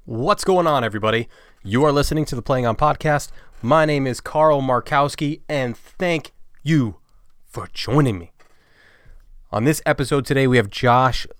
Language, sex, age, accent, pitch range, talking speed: English, male, 20-39, American, 110-135 Hz, 160 wpm